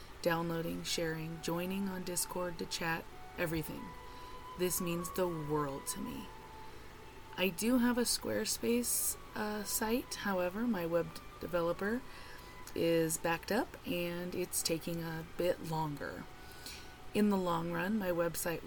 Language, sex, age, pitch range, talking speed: English, female, 30-49, 160-190 Hz, 130 wpm